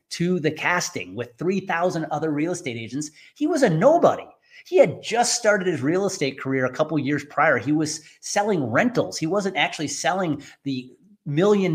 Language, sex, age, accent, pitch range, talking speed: English, male, 30-49, American, 125-175 Hz, 185 wpm